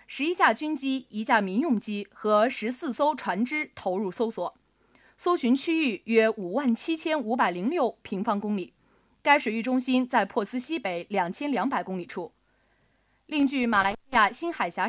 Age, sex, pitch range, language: 20-39, female, 215-290 Hz, Chinese